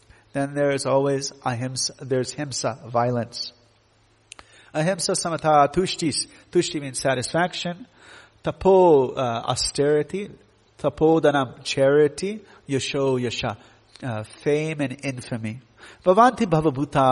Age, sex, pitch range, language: 40-59, male, 125-185 Hz, English